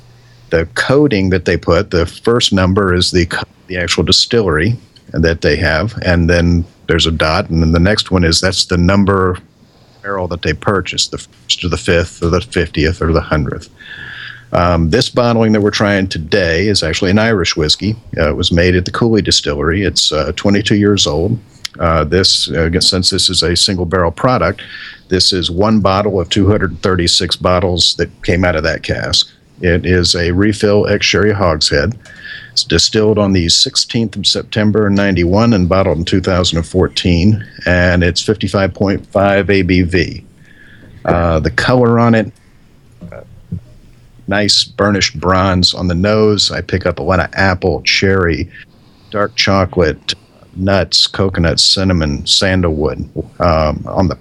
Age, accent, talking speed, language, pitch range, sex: 50-69, American, 160 wpm, English, 85-105 Hz, male